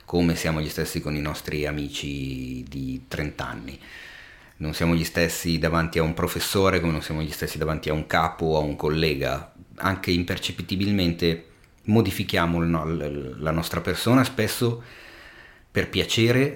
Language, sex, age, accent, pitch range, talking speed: Italian, male, 30-49, native, 85-110 Hz, 150 wpm